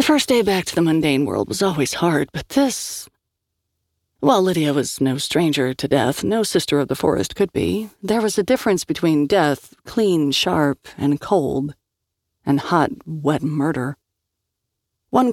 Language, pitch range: English, 130-170 Hz